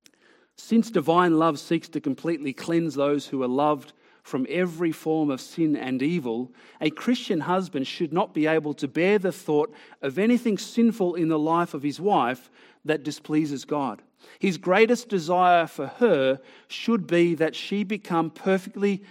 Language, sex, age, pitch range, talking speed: English, male, 40-59, 145-175 Hz, 165 wpm